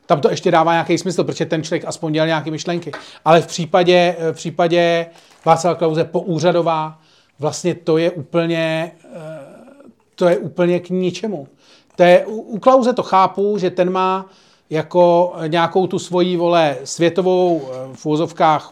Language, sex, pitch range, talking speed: Czech, male, 145-175 Hz, 150 wpm